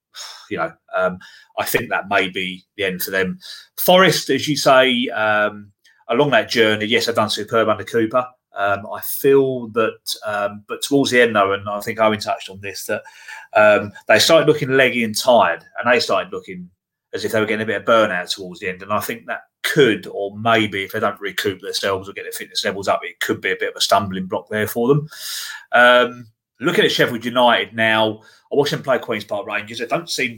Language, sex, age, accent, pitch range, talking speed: English, male, 30-49, British, 100-125 Hz, 225 wpm